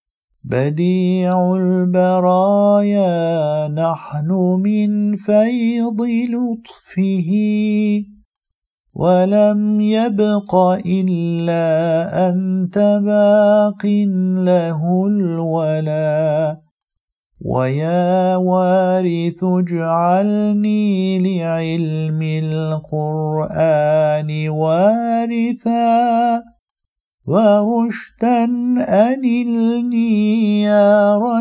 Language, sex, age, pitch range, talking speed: Turkish, male, 50-69, 165-210 Hz, 40 wpm